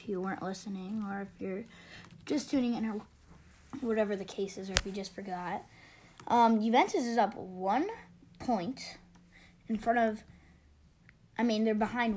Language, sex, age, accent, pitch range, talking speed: English, female, 10-29, American, 180-220 Hz, 160 wpm